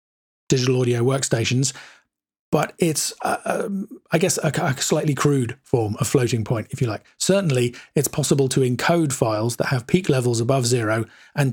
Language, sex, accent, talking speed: English, male, British, 170 wpm